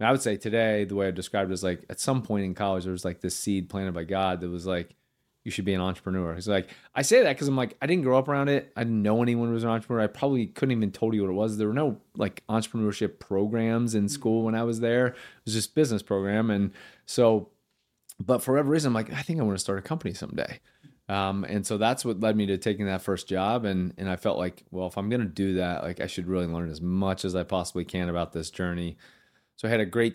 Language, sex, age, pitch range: English, male, 30-49, 95-115 Hz